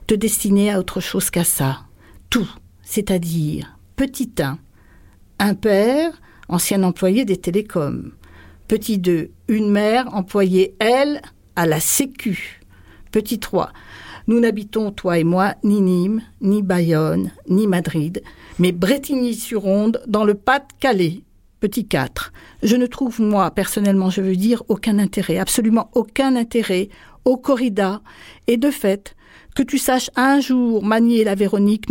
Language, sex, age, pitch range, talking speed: French, female, 50-69, 190-240 Hz, 140 wpm